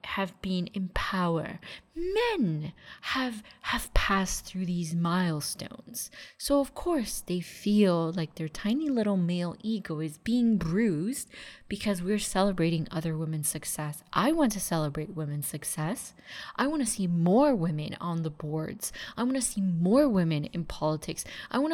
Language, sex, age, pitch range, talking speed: English, female, 20-39, 155-200 Hz, 155 wpm